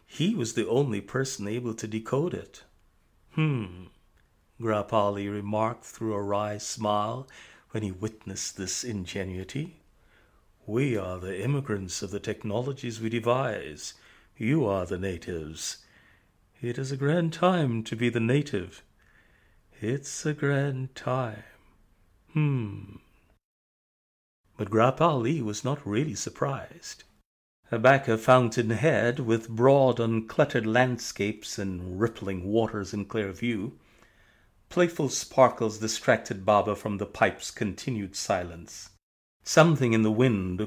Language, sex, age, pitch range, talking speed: English, male, 40-59, 100-120 Hz, 120 wpm